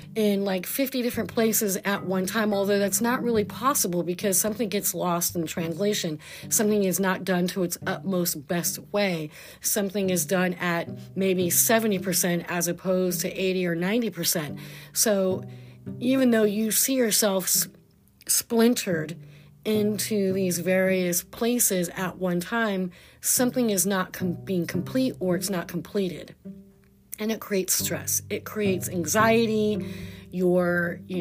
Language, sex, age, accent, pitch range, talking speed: English, female, 40-59, American, 175-215 Hz, 140 wpm